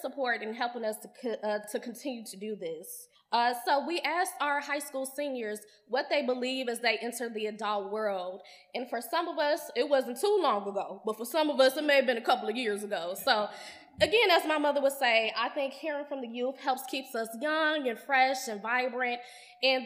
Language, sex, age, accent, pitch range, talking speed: English, female, 10-29, American, 220-275 Hz, 225 wpm